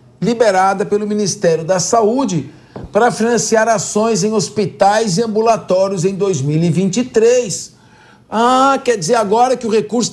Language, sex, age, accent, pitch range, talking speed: Portuguese, male, 50-69, Brazilian, 180-235 Hz, 125 wpm